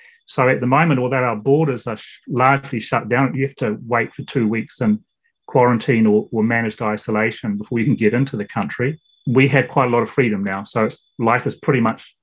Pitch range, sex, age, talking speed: 110-140 Hz, male, 30-49, 220 wpm